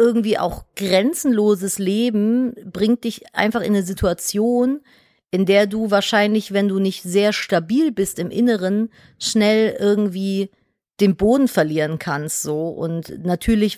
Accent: German